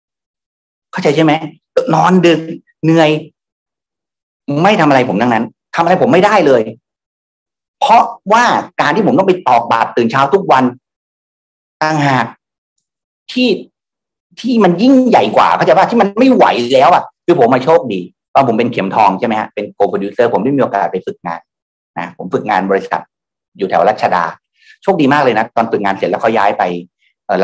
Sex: male